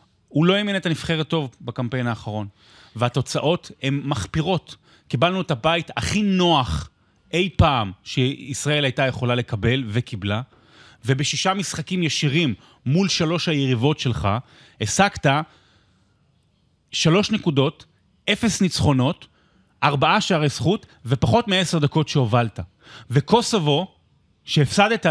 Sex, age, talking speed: male, 30-49, 105 wpm